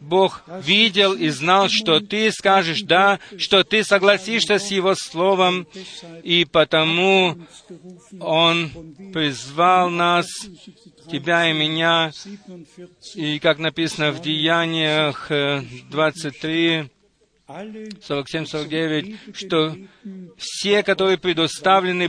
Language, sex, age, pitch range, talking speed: Russian, male, 40-59, 150-185 Hz, 85 wpm